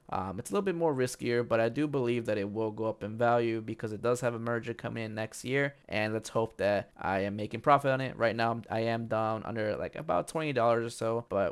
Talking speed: 260 wpm